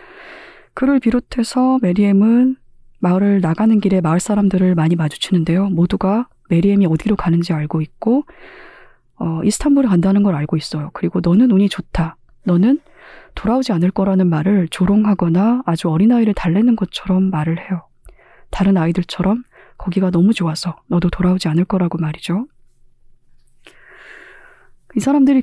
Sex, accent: female, native